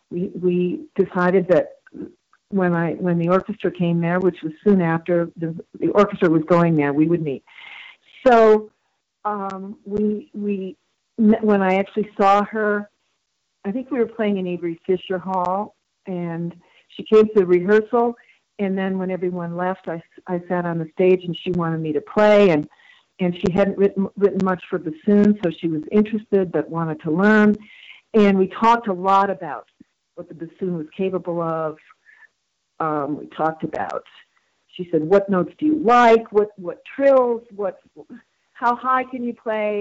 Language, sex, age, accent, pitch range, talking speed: English, female, 50-69, American, 175-210 Hz, 175 wpm